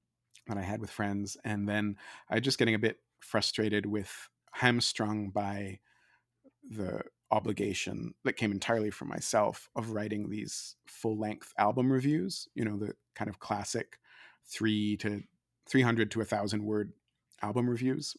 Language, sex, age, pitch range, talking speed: English, male, 30-49, 105-120 Hz, 150 wpm